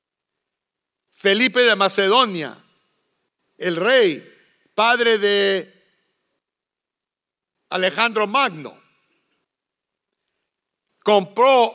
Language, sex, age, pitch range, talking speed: English, male, 60-79, 180-230 Hz, 50 wpm